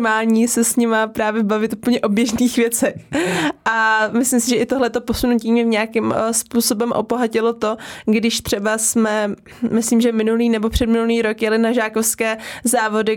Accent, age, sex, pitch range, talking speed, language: native, 20-39, female, 225-250 Hz, 155 wpm, Czech